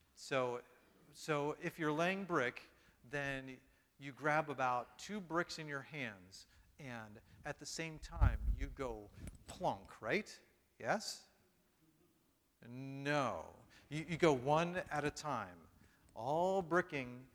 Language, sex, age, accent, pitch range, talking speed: English, male, 40-59, American, 125-180 Hz, 120 wpm